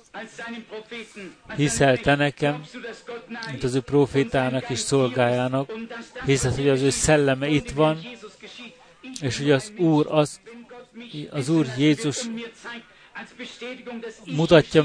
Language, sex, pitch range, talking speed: Hungarian, male, 135-225 Hz, 95 wpm